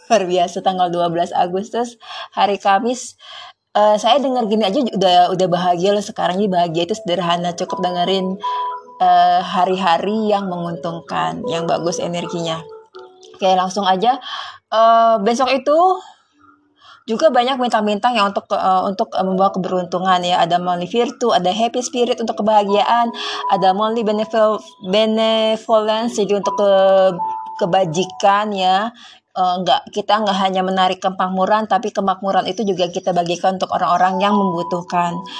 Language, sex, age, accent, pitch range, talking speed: Indonesian, female, 20-39, native, 185-225 Hz, 135 wpm